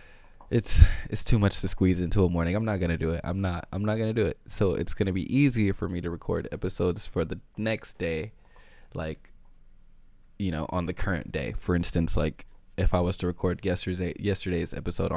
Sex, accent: male, American